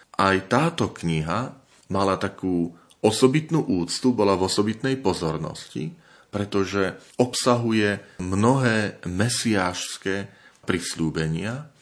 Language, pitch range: Slovak, 85-120 Hz